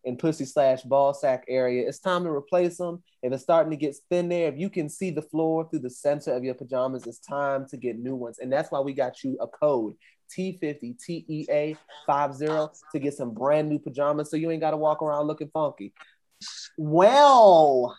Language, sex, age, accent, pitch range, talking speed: English, male, 30-49, American, 140-185 Hz, 205 wpm